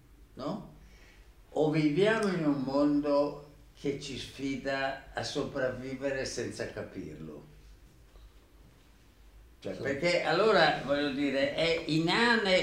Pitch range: 120-160 Hz